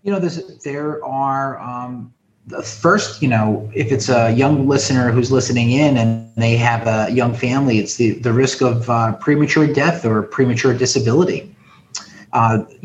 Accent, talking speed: American, 165 wpm